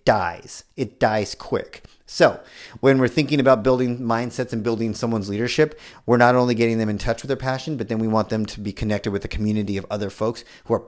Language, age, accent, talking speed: English, 30-49, American, 225 wpm